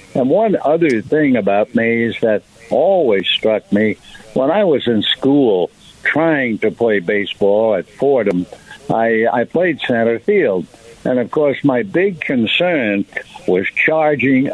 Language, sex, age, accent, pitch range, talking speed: English, male, 60-79, American, 110-140 Hz, 145 wpm